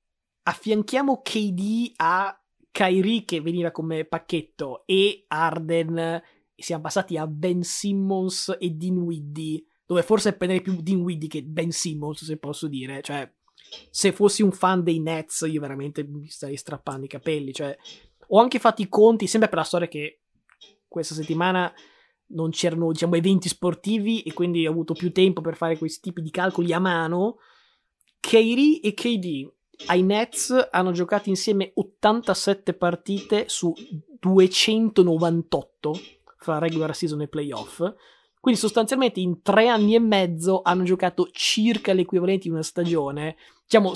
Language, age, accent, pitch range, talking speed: Italian, 20-39, native, 160-200 Hz, 150 wpm